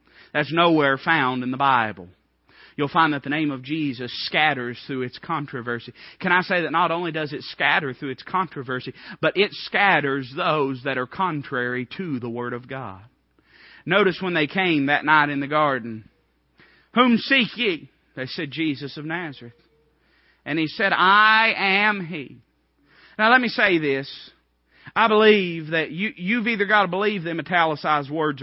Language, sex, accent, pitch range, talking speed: English, male, American, 150-225 Hz, 170 wpm